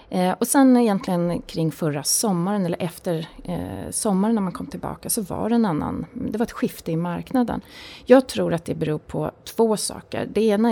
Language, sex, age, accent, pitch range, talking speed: Swedish, female, 30-49, native, 165-225 Hz, 190 wpm